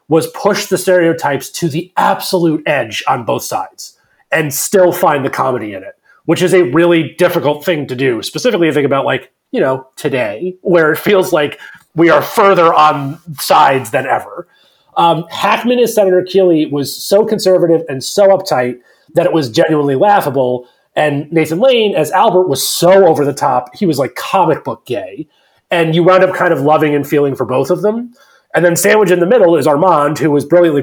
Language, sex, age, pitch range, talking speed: English, male, 30-49, 140-185 Hz, 195 wpm